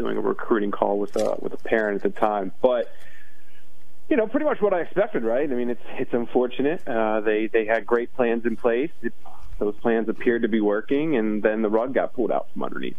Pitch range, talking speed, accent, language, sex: 100-120 Hz, 230 wpm, American, English, male